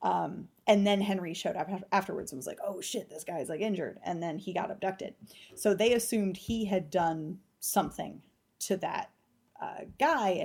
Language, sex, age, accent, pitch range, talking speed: English, female, 20-39, American, 170-205 Hz, 185 wpm